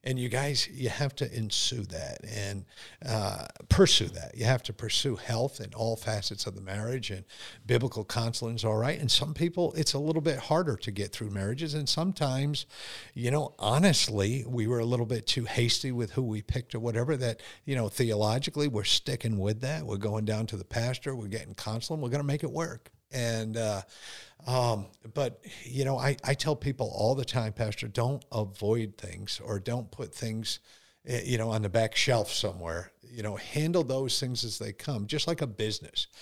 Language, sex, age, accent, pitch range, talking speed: English, male, 50-69, American, 110-140 Hz, 200 wpm